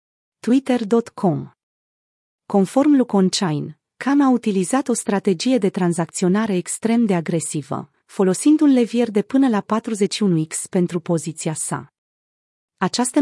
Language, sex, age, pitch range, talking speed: Romanian, female, 30-49, 175-235 Hz, 110 wpm